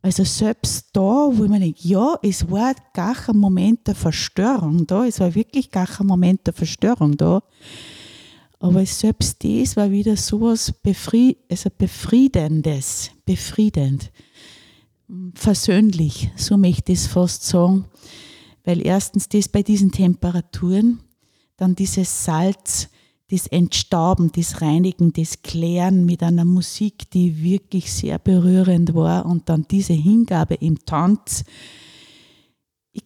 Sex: female